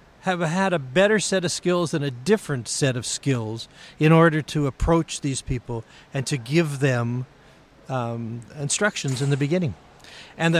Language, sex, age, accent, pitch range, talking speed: English, male, 50-69, American, 125-165 Hz, 170 wpm